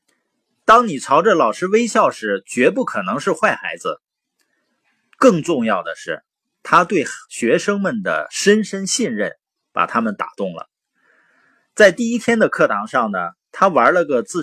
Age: 30-49